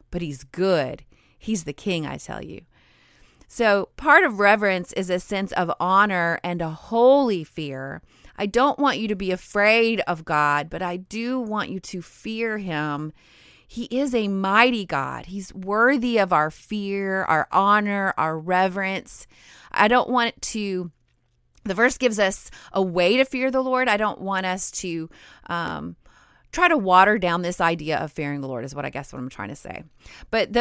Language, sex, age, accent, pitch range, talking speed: English, female, 30-49, American, 165-215 Hz, 185 wpm